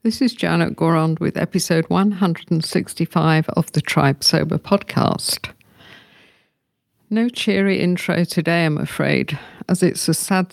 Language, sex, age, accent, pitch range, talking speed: English, female, 50-69, British, 160-190 Hz, 125 wpm